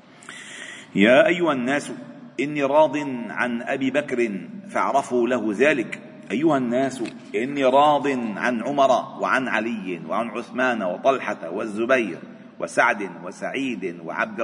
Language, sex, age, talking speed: Arabic, male, 40-59, 110 wpm